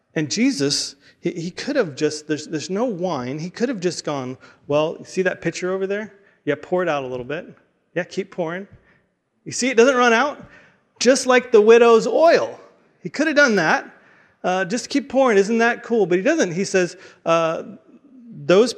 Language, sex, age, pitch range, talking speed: English, male, 40-59, 130-185 Hz, 195 wpm